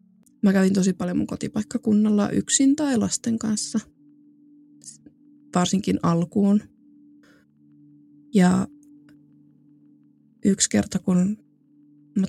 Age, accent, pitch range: 20-39, native, 190-240 Hz